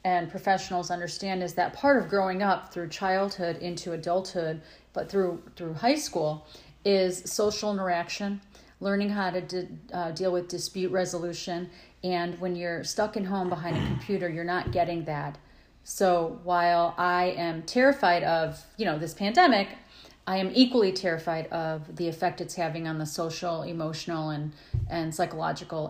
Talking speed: 165 wpm